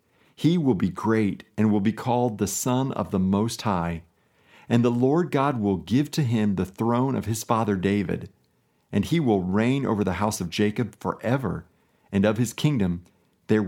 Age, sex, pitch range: 50-69, male, 95-130 Hz